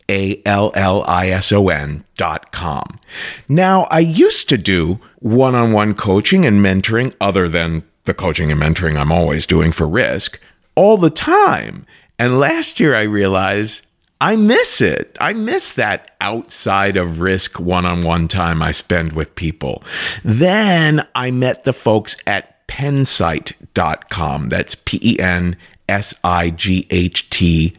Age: 50-69